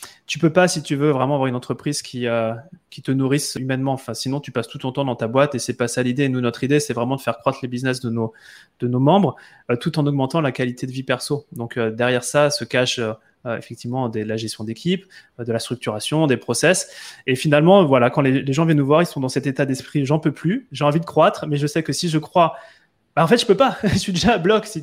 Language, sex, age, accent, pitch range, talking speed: French, male, 20-39, French, 120-150 Hz, 290 wpm